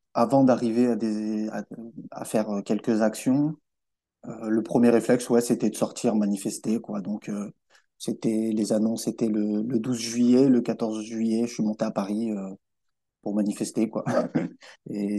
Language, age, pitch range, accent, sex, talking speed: French, 20-39, 110-120 Hz, French, male, 165 wpm